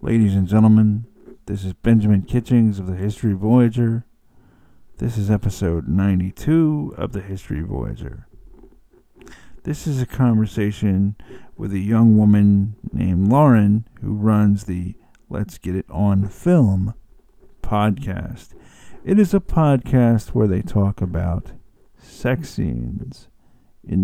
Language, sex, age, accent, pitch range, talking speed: English, male, 50-69, American, 100-135 Hz, 125 wpm